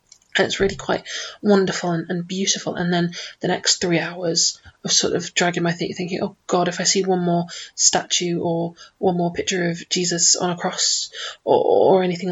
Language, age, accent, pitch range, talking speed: English, 20-39, British, 175-200 Hz, 195 wpm